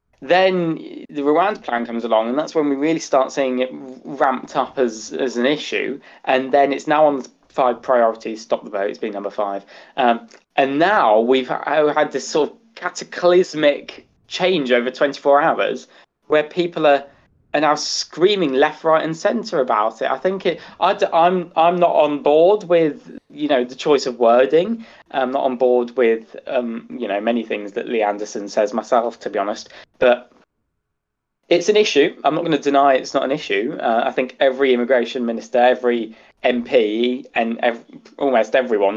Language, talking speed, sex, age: English, 185 wpm, male, 20-39